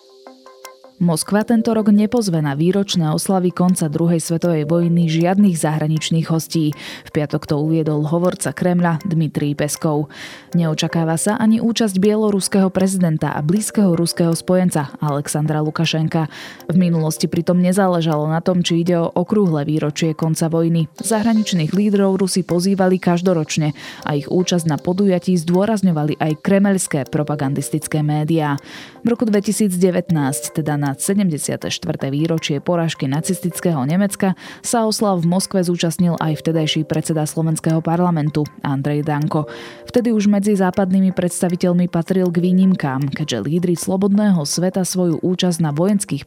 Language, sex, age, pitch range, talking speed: Slovak, female, 20-39, 155-185 Hz, 130 wpm